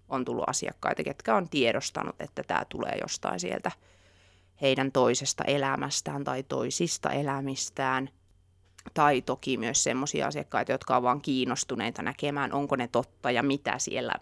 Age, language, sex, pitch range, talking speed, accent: 30-49, Finnish, female, 125-145 Hz, 140 wpm, native